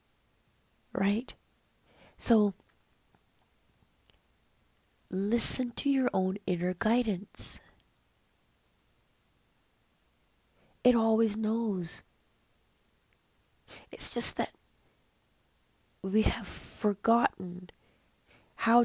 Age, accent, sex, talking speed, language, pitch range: 30-49, American, female, 55 wpm, English, 180-215 Hz